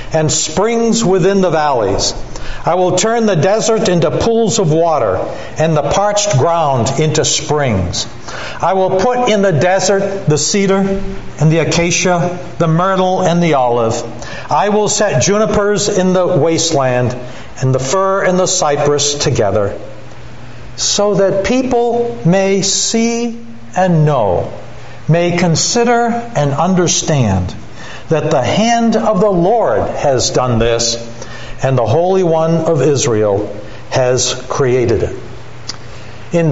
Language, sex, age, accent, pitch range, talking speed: English, male, 60-79, American, 130-195 Hz, 130 wpm